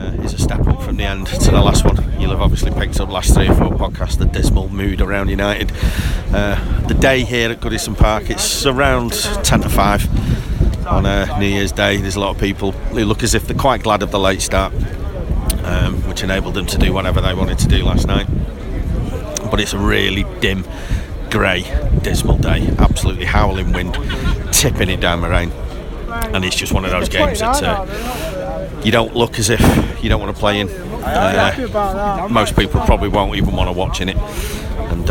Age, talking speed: 40-59, 200 wpm